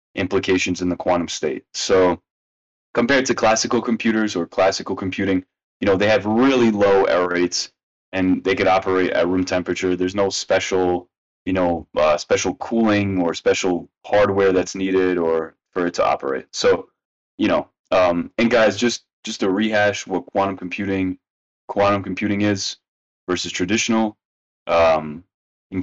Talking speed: 155 wpm